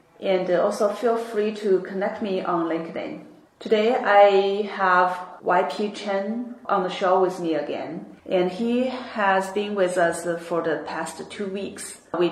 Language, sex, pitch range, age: Chinese, female, 175-215 Hz, 40-59